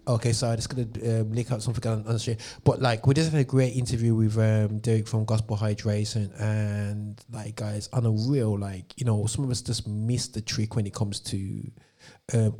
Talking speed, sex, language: 235 wpm, male, English